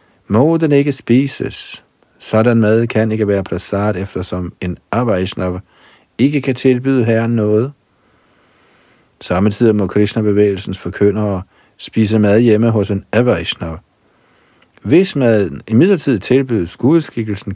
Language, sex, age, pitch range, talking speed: Danish, male, 50-69, 95-115 Hz, 115 wpm